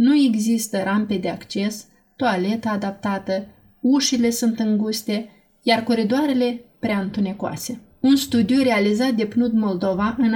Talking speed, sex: 120 wpm, female